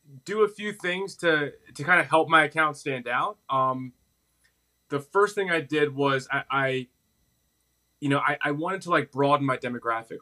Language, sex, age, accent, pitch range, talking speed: English, male, 20-39, American, 130-160 Hz, 190 wpm